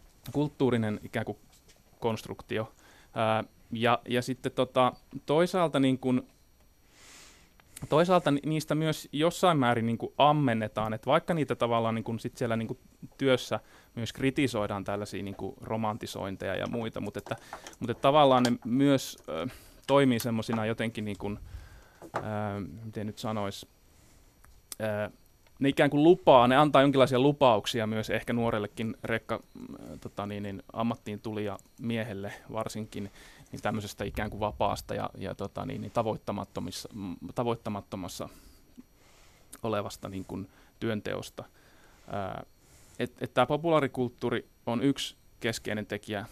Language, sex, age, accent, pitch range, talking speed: Finnish, male, 20-39, native, 105-135 Hz, 120 wpm